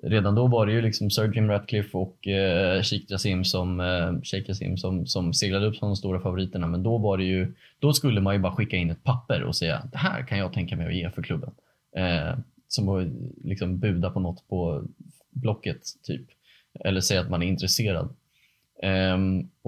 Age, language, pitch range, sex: 20-39, Swedish, 90-115 Hz, male